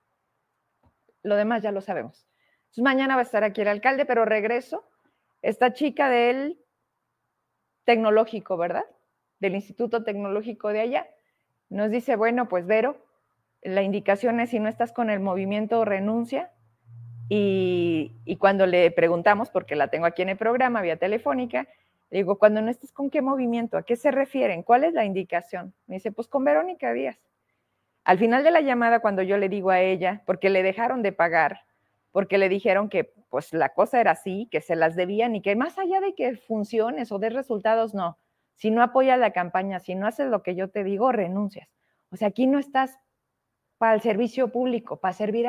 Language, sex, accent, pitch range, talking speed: Spanish, female, Mexican, 190-250 Hz, 185 wpm